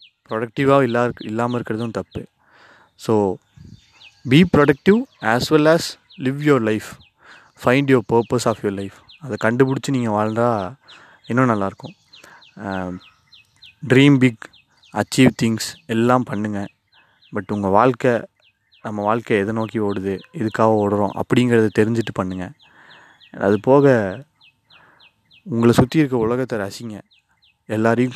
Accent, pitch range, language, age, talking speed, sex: native, 100-125 Hz, Tamil, 20-39, 115 wpm, male